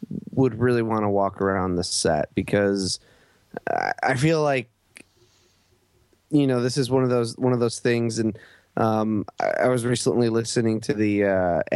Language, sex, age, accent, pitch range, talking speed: English, male, 20-39, American, 100-125 Hz, 170 wpm